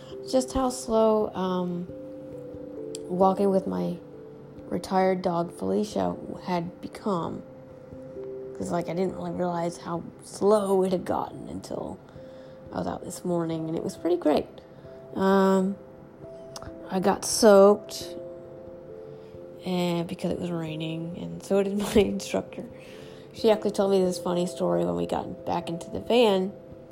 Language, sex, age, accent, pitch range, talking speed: English, female, 30-49, American, 130-200 Hz, 135 wpm